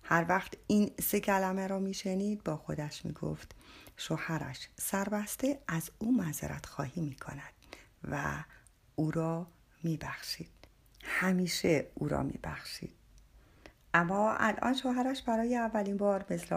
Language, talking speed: Persian, 125 wpm